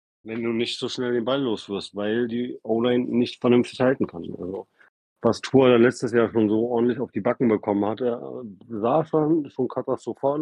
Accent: German